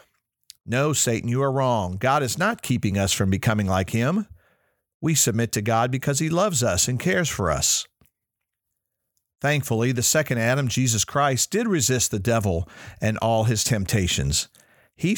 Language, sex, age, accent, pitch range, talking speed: English, male, 50-69, American, 105-135 Hz, 160 wpm